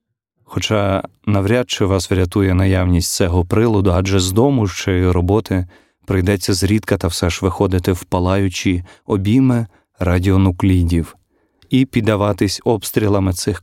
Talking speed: 125 wpm